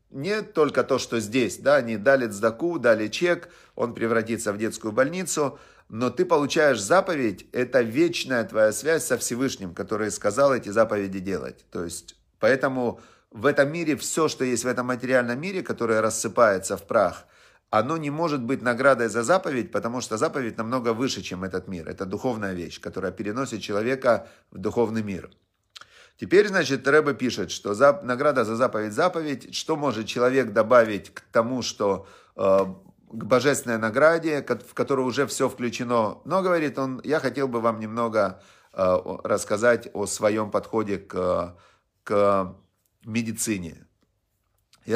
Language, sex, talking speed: Russian, male, 150 wpm